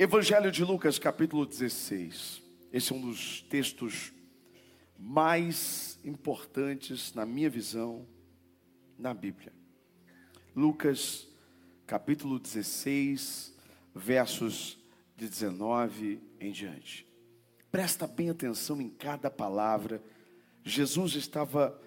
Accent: Brazilian